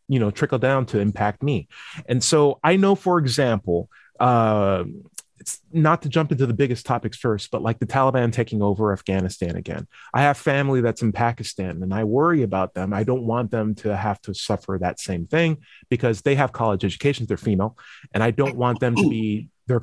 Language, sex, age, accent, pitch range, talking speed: English, male, 30-49, American, 105-140 Hz, 205 wpm